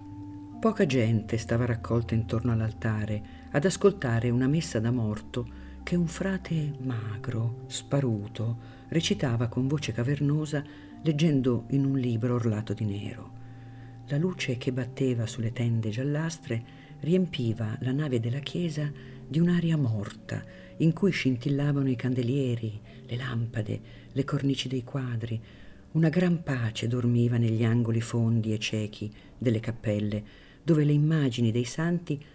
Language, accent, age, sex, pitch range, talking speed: Italian, native, 50-69, female, 115-145 Hz, 130 wpm